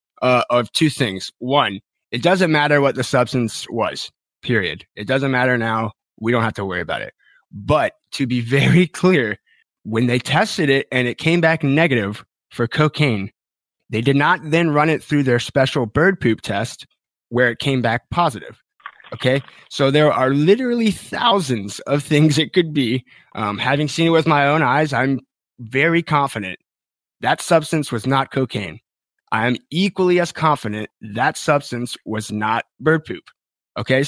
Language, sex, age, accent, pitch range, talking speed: English, male, 20-39, American, 120-155 Hz, 170 wpm